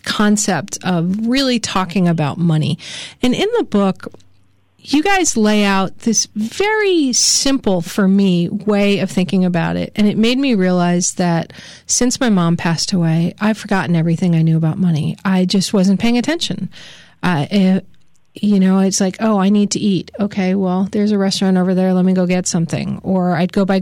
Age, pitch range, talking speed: 40-59, 180-210 Hz, 185 wpm